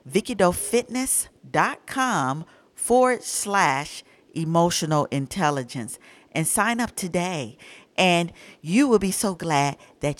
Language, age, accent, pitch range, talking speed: English, 50-69, American, 155-220 Hz, 95 wpm